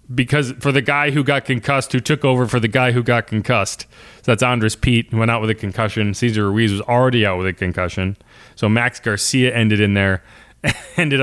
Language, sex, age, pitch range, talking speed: English, male, 20-39, 120-195 Hz, 220 wpm